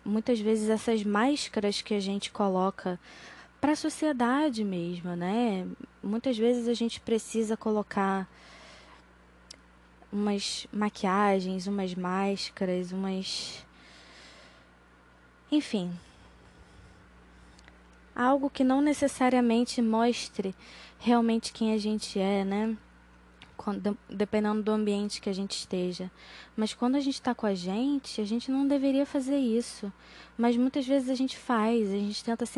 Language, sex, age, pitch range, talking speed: Portuguese, female, 10-29, 180-235 Hz, 125 wpm